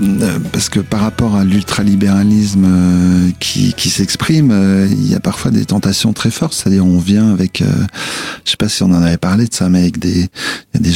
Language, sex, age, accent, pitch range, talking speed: French, male, 40-59, French, 90-105 Hz, 195 wpm